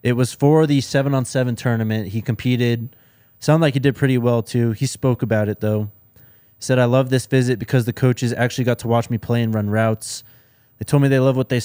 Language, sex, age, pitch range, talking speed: English, male, 20-39, 110-125 Hz, 230 wpm